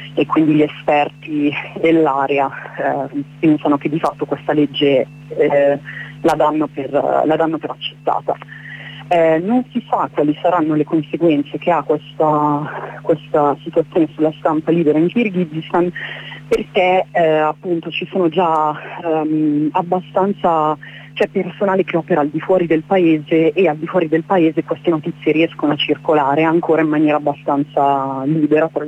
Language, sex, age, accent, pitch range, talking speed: Italian, female, 30-49, native, 145-165 Hz, 140 wpm